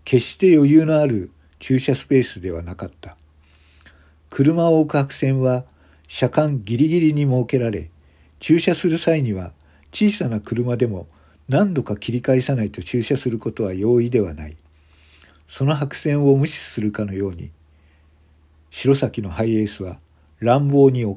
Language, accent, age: Japanese, native, 50-69